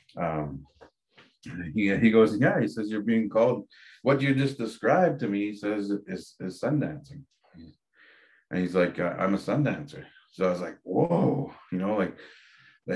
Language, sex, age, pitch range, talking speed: English, male, 30-49, 95-110 Hz, 175 wpm